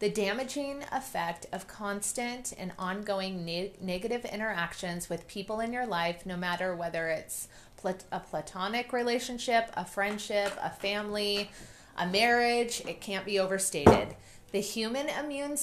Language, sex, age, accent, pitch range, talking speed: English, female, 30-49, American, 185-225 Hz, 130 wpm